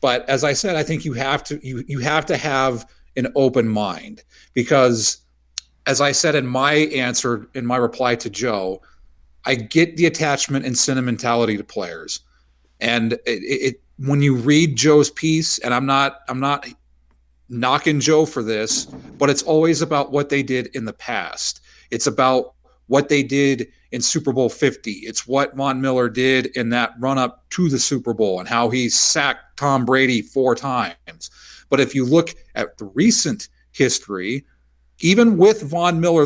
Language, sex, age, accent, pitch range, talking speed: English, male, 40-59, American, 120-150 Hz, 175 wpm